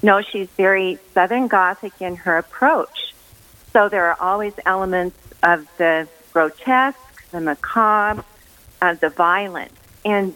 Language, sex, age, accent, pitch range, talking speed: English, female, 50-69, American, 185-240 Hz, 125 wpm